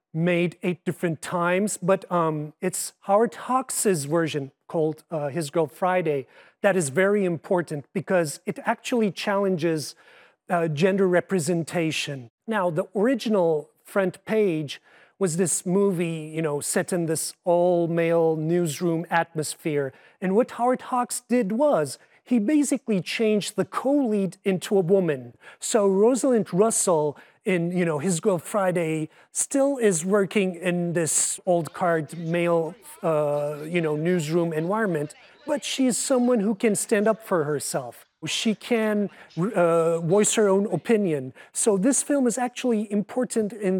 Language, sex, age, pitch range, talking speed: English, male, 30-49, 165-210 Hz, 140 wpm